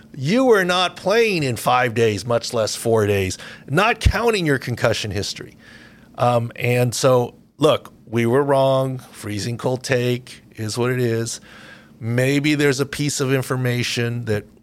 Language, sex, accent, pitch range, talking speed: English, male, American, 110-130 Hz, 150 wpm